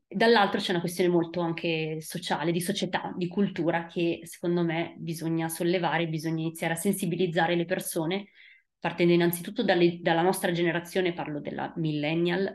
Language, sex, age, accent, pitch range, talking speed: Italian, female, 20-39, native, 165-190 Hz, 145 wpm